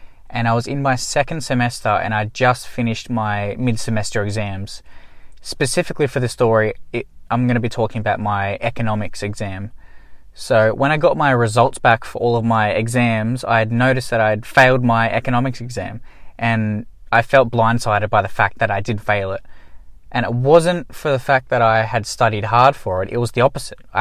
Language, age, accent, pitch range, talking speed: English, 20-39, Australian, 105-125 Hz, 195 wpm